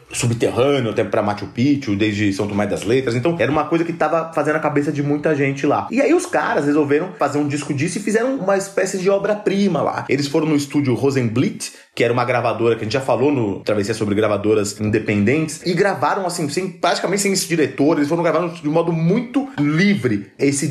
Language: Portuguese